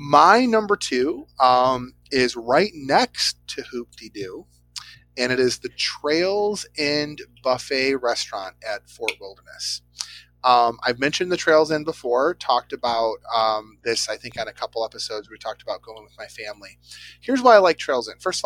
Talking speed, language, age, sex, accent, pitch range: 170 wpm, English, 30-49, male, American, 105-170 Hz